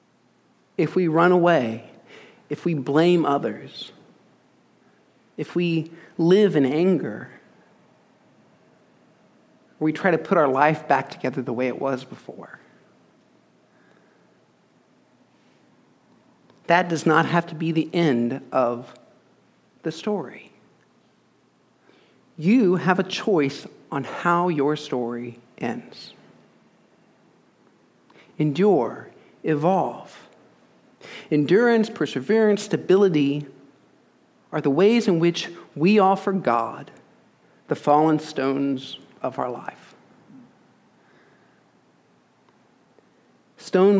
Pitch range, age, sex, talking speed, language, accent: 140-185 Hz, 50-69, male, 90 wpm, English, American